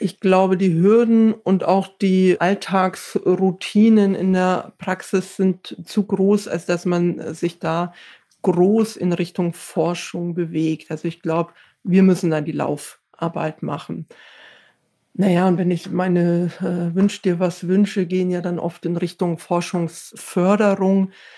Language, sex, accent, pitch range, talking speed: German, female, German, 175-200 Hz, 140 wpm